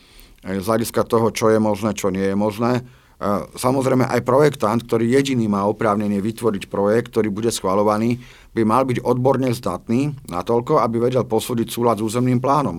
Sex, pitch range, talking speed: male, 100-120 Hz, 165 wpm